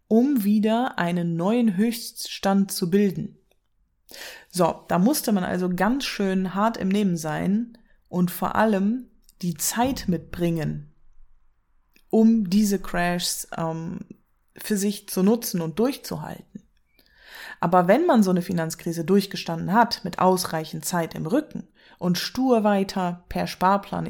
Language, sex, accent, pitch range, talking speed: German, female, German, 175-225 Hz, 130 wpm